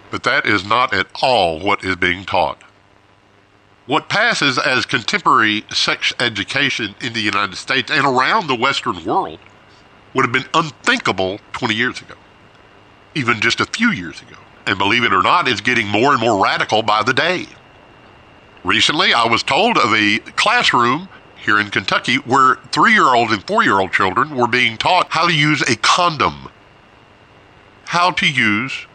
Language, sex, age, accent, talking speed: English, male, 50-69, American, 160 wpm